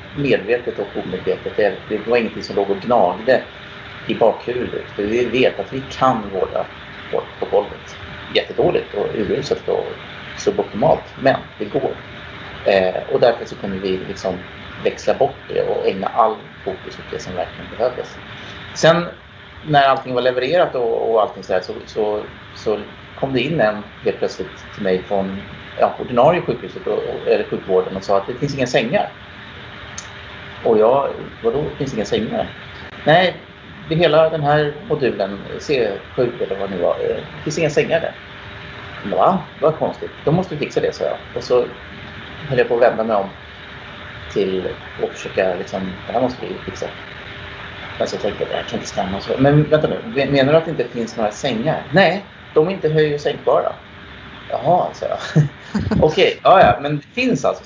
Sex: male